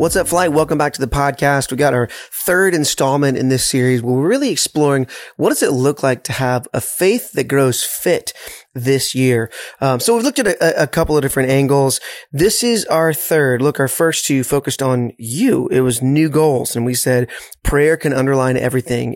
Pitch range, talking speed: 125-160 Hz, 205 wpm